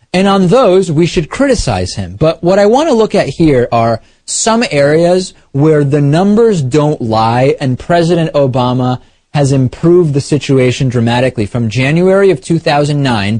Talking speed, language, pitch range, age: 155 wpm, English, 115-155 Hz, 30-49